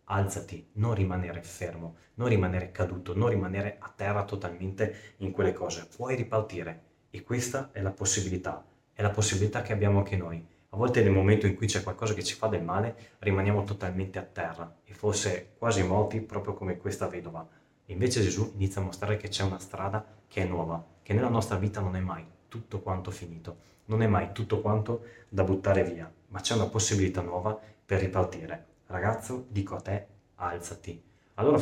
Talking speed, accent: 185 wpm, native